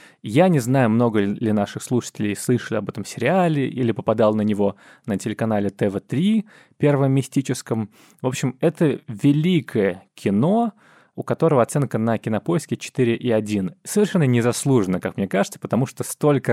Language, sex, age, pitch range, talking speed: Russian, male, 20-39, 110-150 Hz, 140 wpm